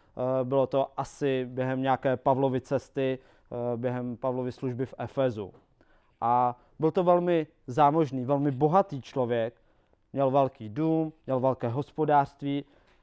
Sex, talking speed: male, 120 wpm